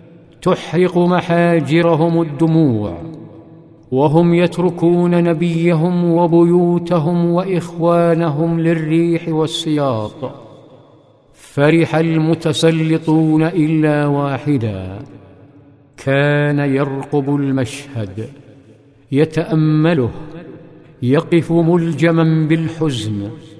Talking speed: 55 wpm